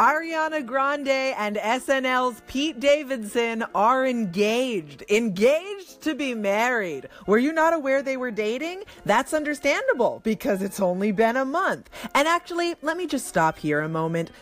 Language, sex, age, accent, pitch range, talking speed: English, female, 30-49, American, 185-285 Hz, 150 wpm